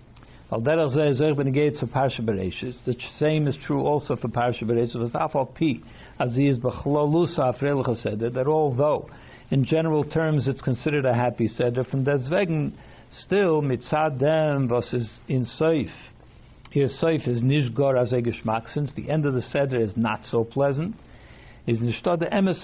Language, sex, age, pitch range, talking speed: English, male, 60-79, 125-155 Hz, 160 wpm